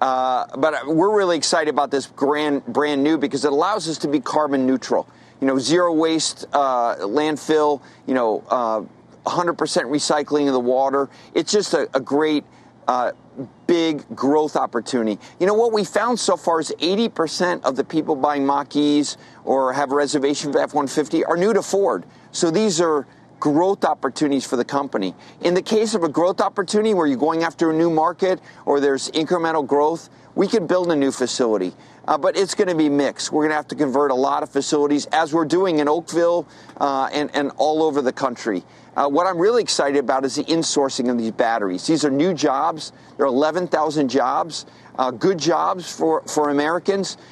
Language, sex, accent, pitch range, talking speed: English, male, American, 140-165 Hz, 195 wpm